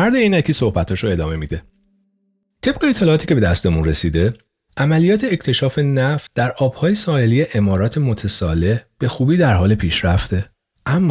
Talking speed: 135 wpm